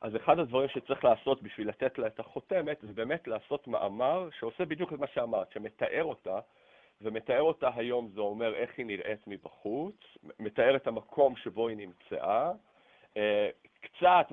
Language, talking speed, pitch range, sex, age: Hebrew, 155 wpm, 105-165 Hz, male, 50-69